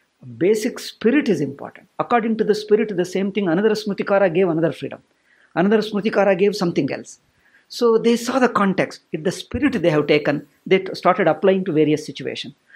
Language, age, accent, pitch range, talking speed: English, 50-69, Indian, 155-215 Hz, 180 wpm